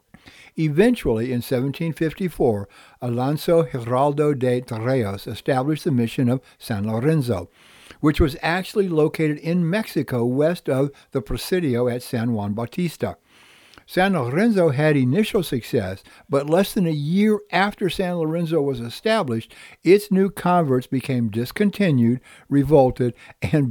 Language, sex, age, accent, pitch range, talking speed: English, male, 60-79, American, 125-170 Hz, 125 wpm